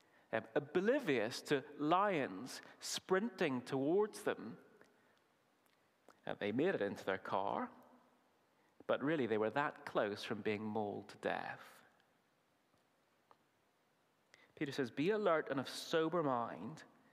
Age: 30-49